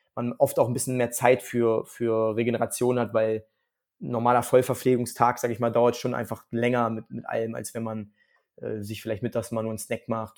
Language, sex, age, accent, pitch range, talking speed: German, male, 20-39, German, 115-130 Hz, 210 wpm